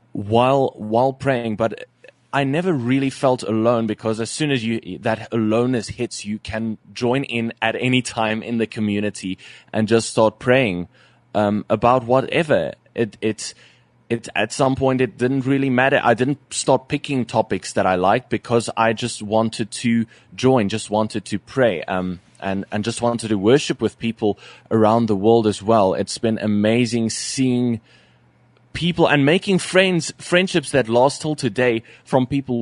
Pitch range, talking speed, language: 105-130 Hz, 175 wpm, English